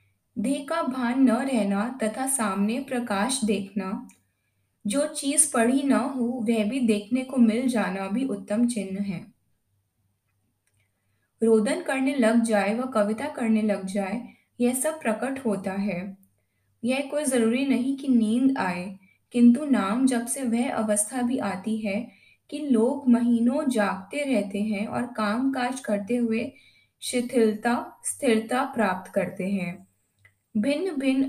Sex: female